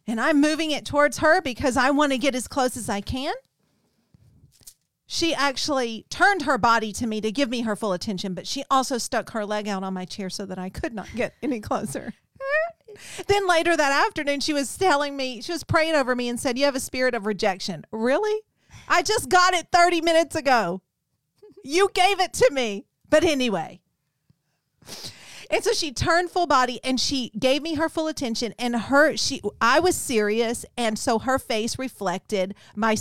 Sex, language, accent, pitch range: female, English, American, 225-310 Hz